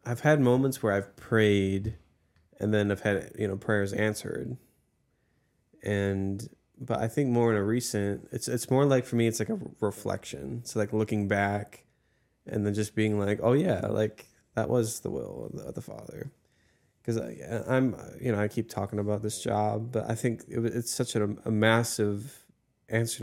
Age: 20-39